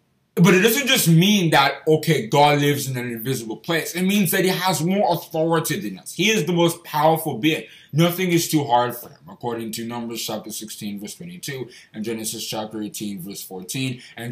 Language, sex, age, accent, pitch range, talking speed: English, male, 20-39, American, 125-175 Hz, 200 wpm